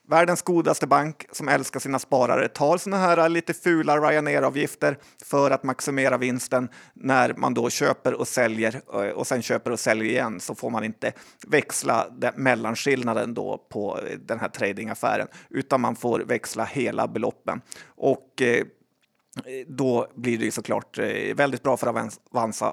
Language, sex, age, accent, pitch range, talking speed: Swedish, male, 30-49, native, 125-150 Hz, 150 wpm